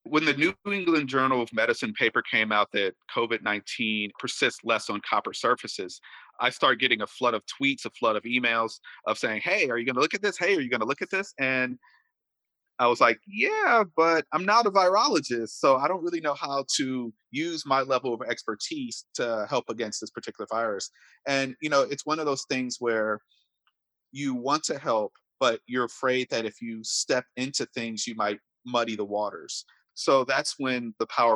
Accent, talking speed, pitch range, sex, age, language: American, 205 wpm, 115-145 Hz, male, 40-59, English